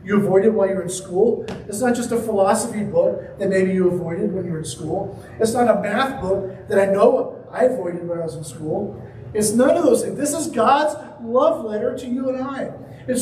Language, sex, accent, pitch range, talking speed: English, male, American, 155-230 Hz, 235 wpm